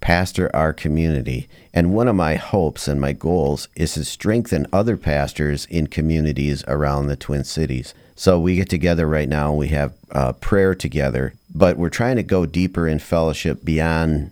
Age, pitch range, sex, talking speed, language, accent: 40-59, 75-90 Hz, male, 175 wpm, English, American